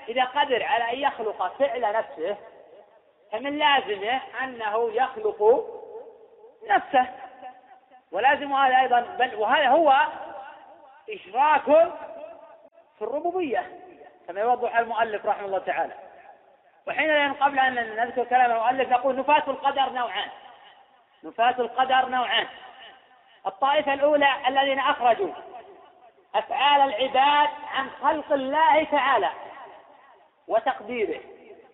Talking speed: 95 wpm